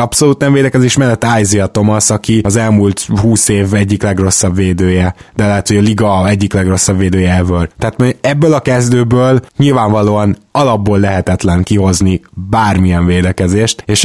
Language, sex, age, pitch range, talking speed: Hungarian, male, 20-39, 100-120 Hz, 140 wpm